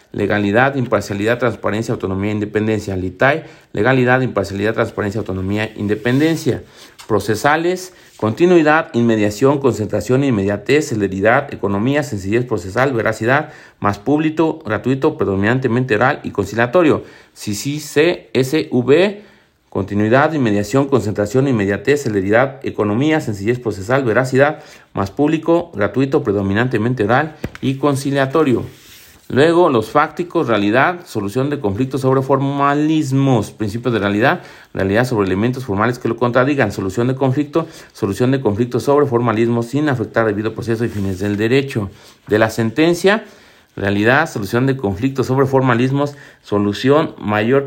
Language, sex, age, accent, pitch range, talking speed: Spanish, male, 40-59, Mexican, 105-140 Hz, 115 wpm